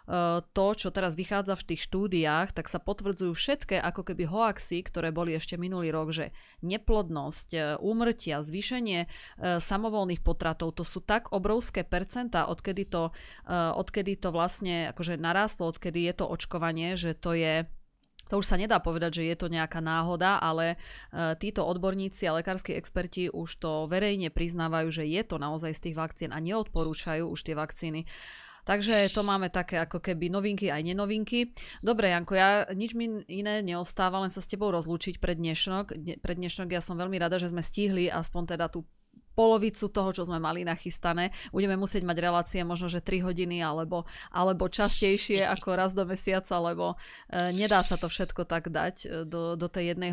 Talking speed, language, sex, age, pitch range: 170 wpm, Slovak, female, 30-49, 165-190 Hz